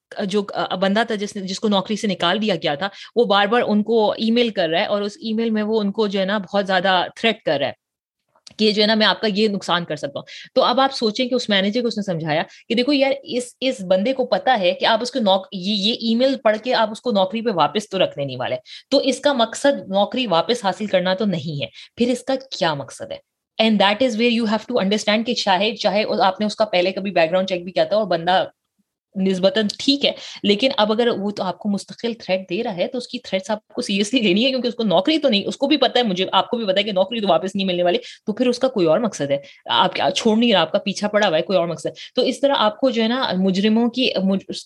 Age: 20-39